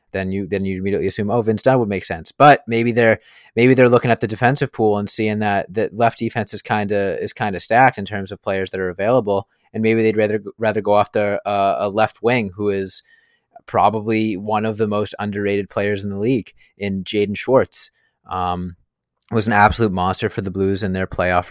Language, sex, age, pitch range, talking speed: English, male, 20-39, 90-105 Hz, 220 wpm